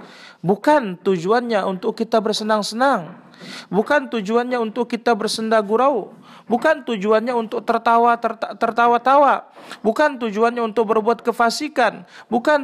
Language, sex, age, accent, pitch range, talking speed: Indonesian, male, 40-59, native, 190-240 Hz, 110 wpm